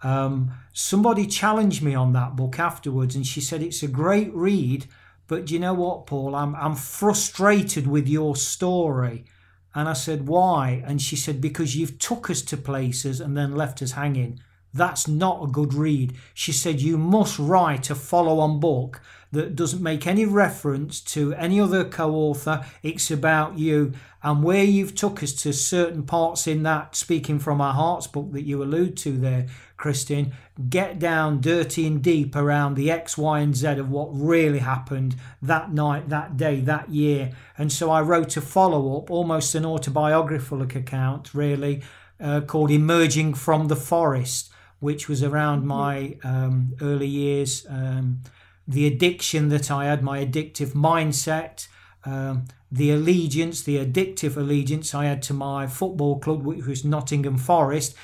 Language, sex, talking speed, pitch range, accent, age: English, male, 165 wpm, 135-160 Hz, British, 40-59